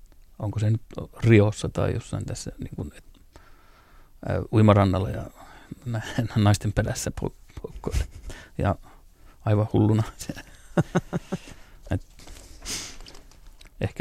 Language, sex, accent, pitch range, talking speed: Finnish, male, native, 100-115 Hz, 100 wpm